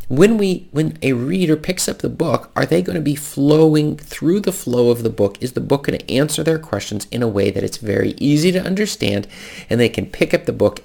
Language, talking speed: English, 250 wpm